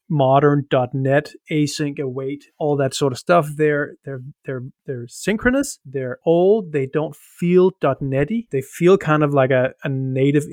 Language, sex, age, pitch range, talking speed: English, male, 30-49, 135-165 Hz, 155 wpm